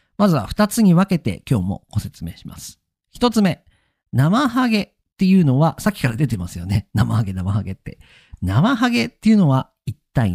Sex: male